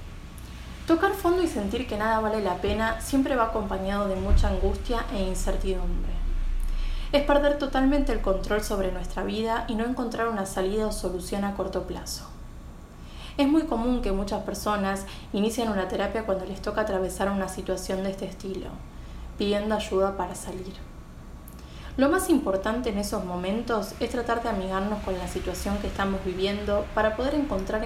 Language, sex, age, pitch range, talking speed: Spanish, female, 20-39, 185-225 Hz, 165 wpm